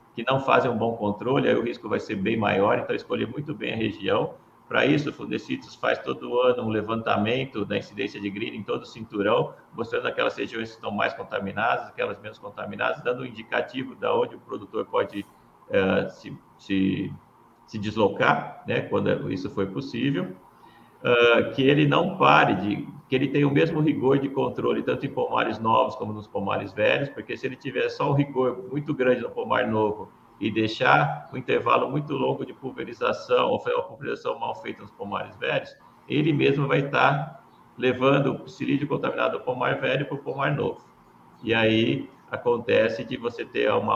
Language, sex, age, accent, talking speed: Portuguese, male, 50-69, Brazilian, 185 wpm